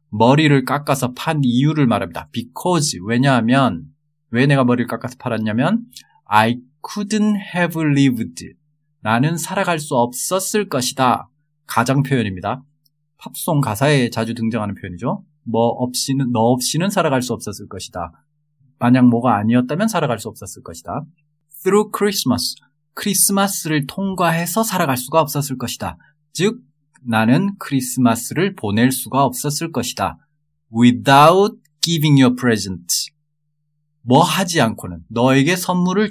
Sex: male